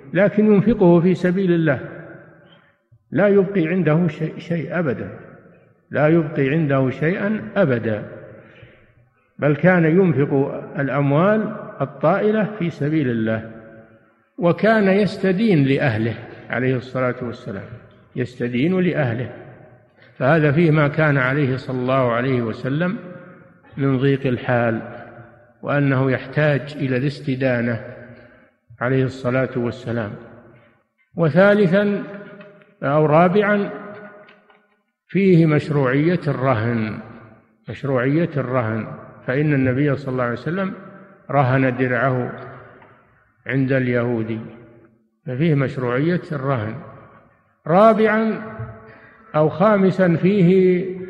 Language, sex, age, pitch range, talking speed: Arabic, male, 60-79, 125-180 Hz, 90 wpm